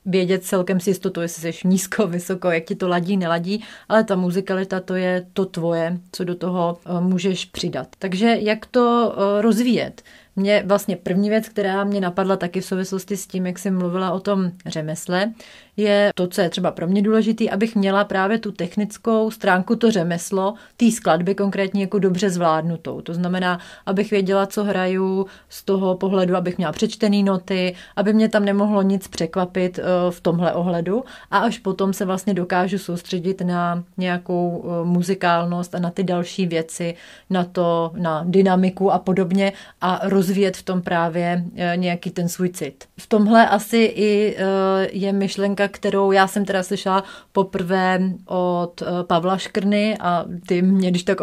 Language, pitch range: Czech, 180-200 Hz